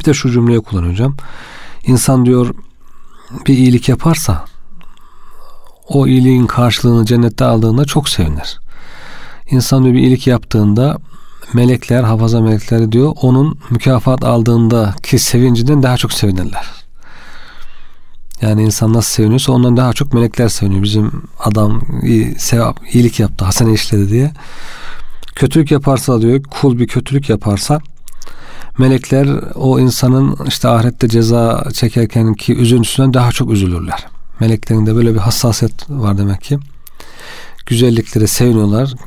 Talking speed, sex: 120 wpm, male